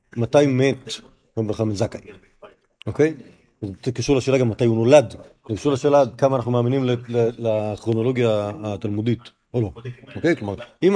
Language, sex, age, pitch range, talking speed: Hebrew, male, 40-59, 115-150 Hz, 135 wpm